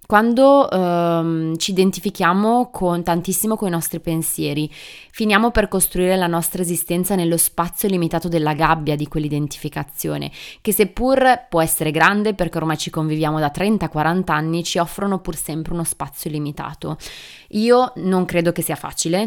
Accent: native